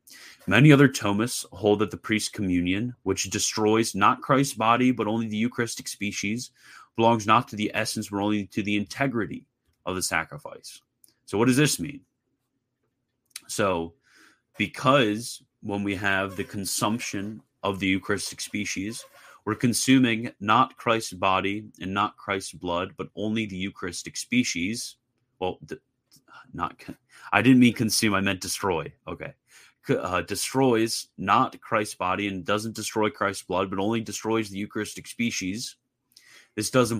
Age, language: 30-49, English